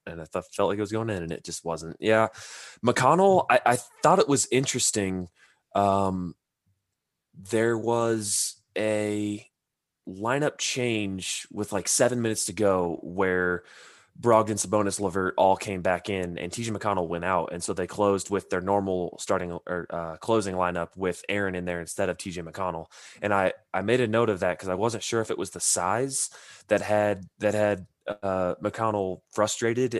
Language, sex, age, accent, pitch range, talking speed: English, male, 20-39, American, 90-105 Hz, 180 wpm